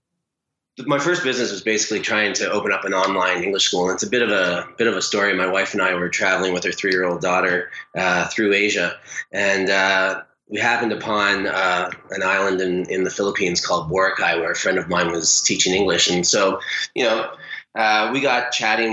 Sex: male